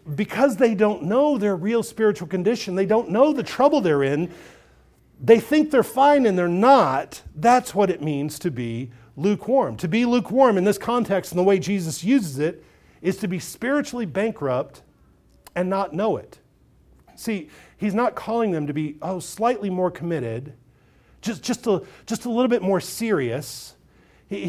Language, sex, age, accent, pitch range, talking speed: English, male, 50-69, American, 175-235 Hz, 175 wpm